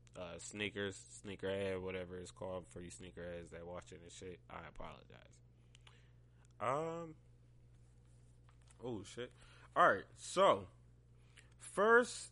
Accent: American